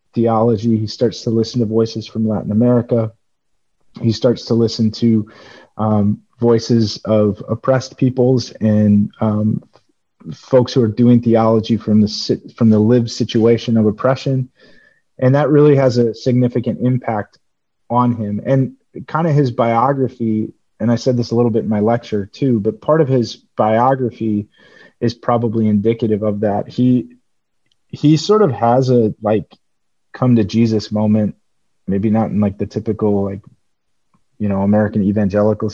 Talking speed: 155 wpm